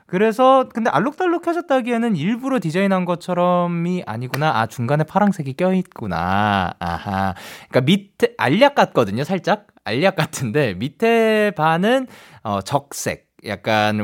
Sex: male